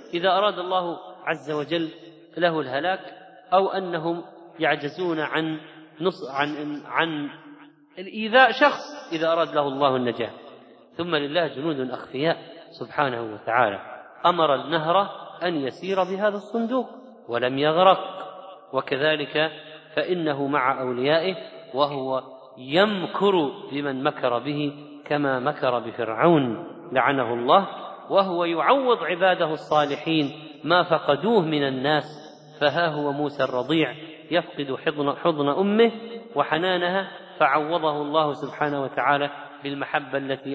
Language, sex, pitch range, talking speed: Arabic, male, 145-190 Hz, 105 wpm